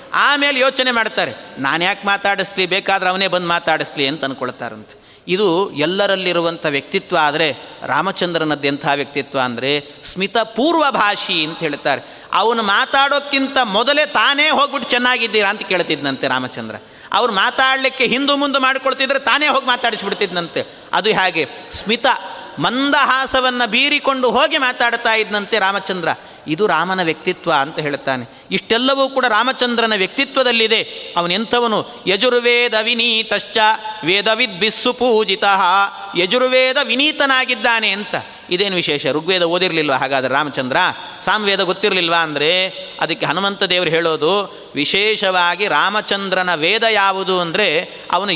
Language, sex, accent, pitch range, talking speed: Kannada, male, native, 170-245 Hz, 110 wpm